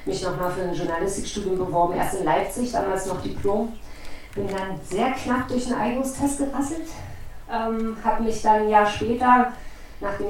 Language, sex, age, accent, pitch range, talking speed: German, female, 40-59, German, 180-215 Hz, 165 wpm